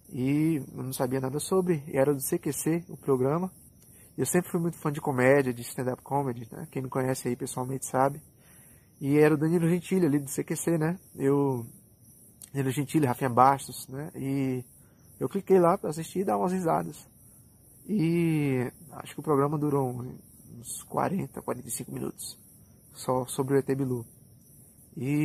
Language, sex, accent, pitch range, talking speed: Portuguese, male, Brazilian, 125-150 Hz, 165 wpm